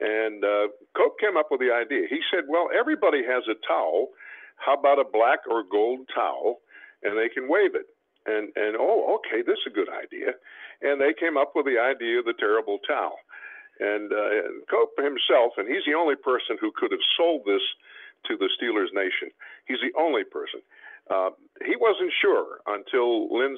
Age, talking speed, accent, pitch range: 60-79, 190 wpm, American, 330-425 Hz